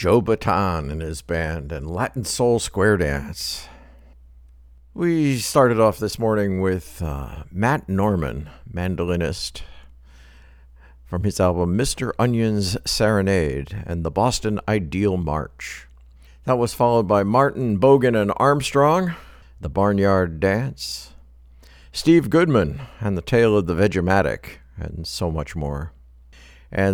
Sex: male